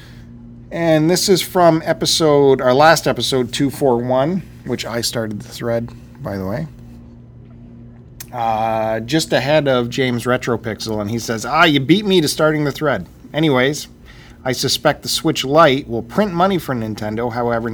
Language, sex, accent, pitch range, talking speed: English, male, American, 105-135 Hz, 155 wpm